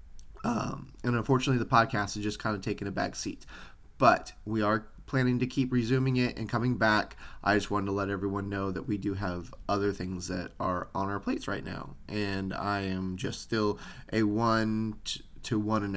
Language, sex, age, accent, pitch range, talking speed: English, male, 10-29, American, 100-115 Hz, 205 wpm